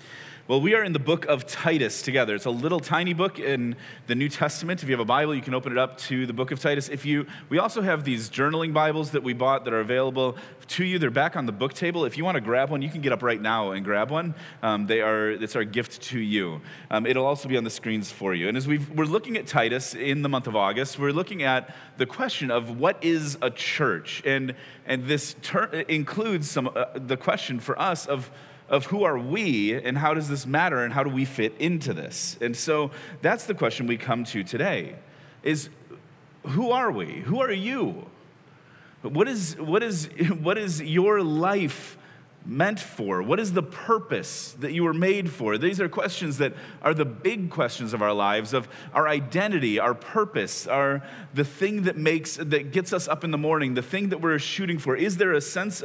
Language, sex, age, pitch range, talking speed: English, male, 30-49, 125-165 Hz, 225 wpm